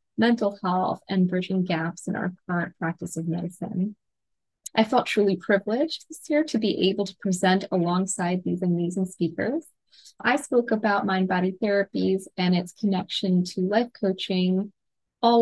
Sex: female